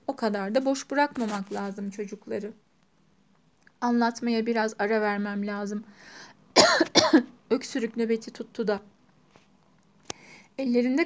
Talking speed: 90 wpm